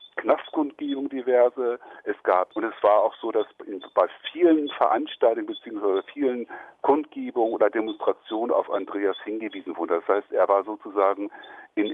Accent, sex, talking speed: German, male, 145 wpm